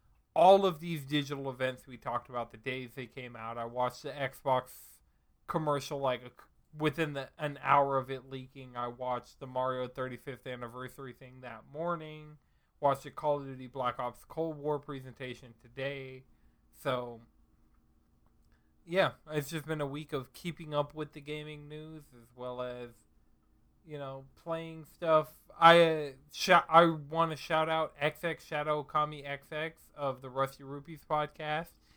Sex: male